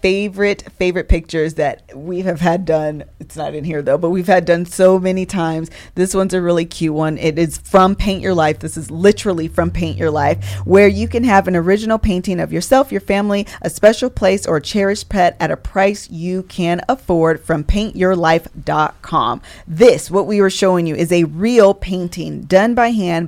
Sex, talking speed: female, 200 wpm